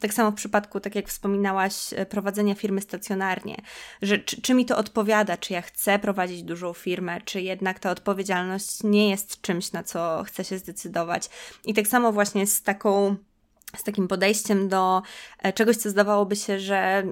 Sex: female